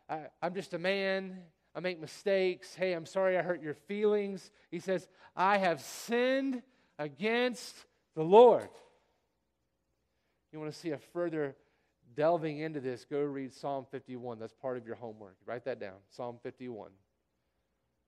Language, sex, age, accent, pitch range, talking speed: English, male, 40-59, American, 105-155 Hz, 155 wpm